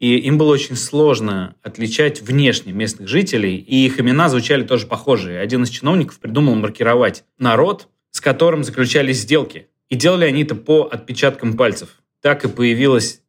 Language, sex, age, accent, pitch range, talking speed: Russian, male, 20-39, native, 105-135 Hz, 160 wpm